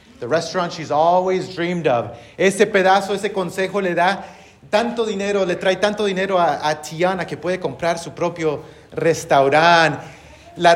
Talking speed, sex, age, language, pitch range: 150 wpm, male, 30-49, English, 155-190 Hz